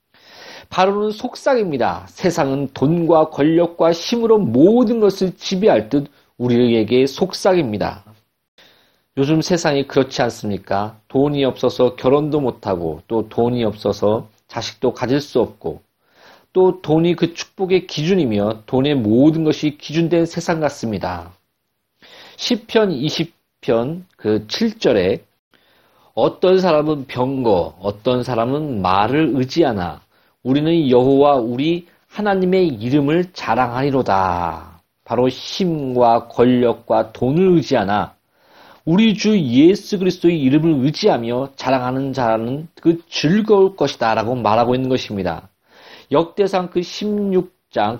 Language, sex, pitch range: Korean, male, 115-175 Hz